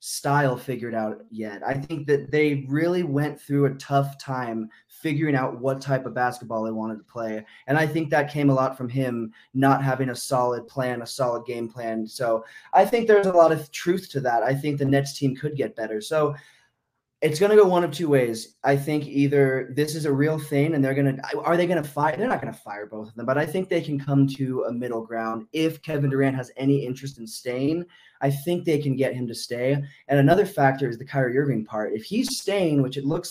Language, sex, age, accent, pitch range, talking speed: English, male, 20-39, American, 125-150 Hz, 240 wpm